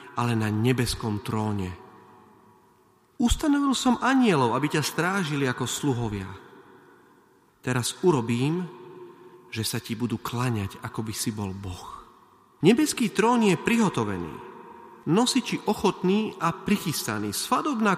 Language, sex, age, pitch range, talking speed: Slovak, male, 40-59, 120-185 Hz, 110 wpm